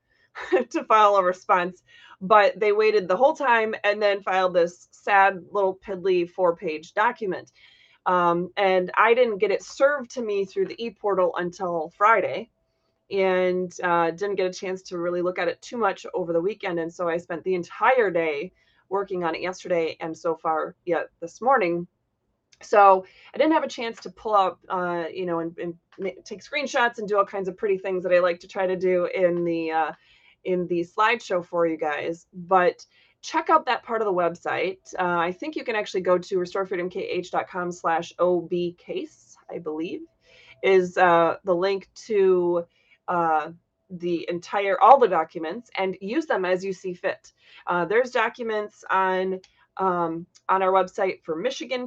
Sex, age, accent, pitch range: female, 30-49, American, 175-215 Hz